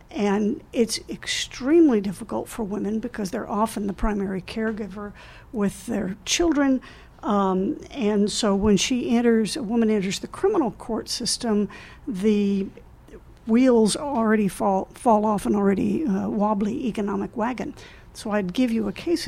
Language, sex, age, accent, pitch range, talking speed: English, female, 60-79, American, 205-250 Hz, 145 wpm